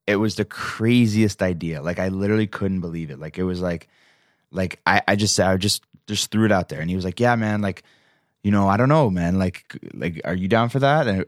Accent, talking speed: American, 250 wpm